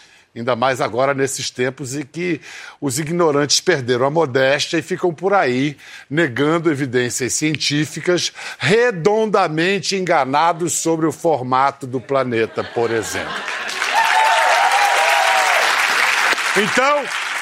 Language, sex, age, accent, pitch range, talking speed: Portuguese, male, 60-79, Brazilian, 140-205 Hz, 100 wpm